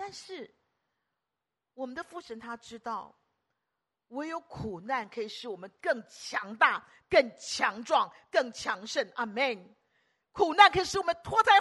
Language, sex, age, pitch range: Chinese, female, 40-59, 230-340 Hz